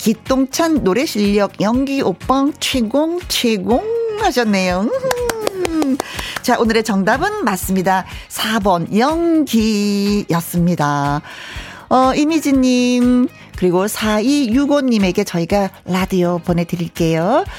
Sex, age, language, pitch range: female, 40-59, Korean, 190-290 Hz